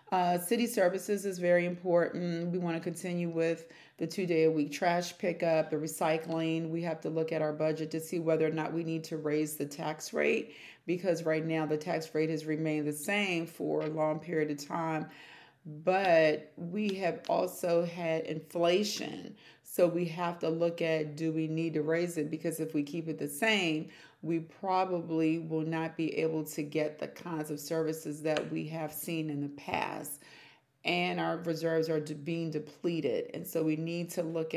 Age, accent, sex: 40-59, American, female